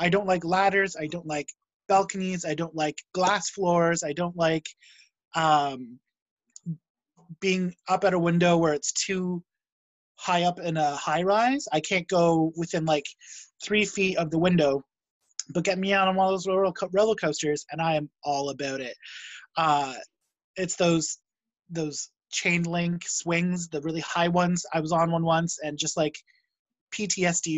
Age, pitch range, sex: 20-39, 155-190 Hz, male